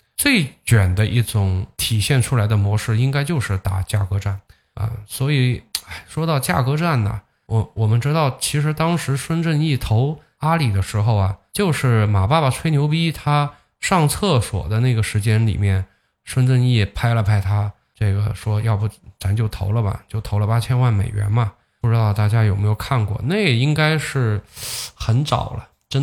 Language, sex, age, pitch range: Chinese, male, 10-29, 105-130 Hz